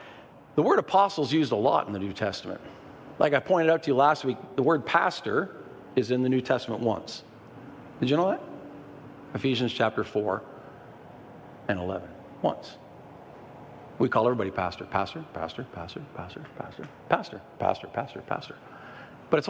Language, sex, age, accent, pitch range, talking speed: English, male, 50-69, American, 115-165 Hz, 165 wpm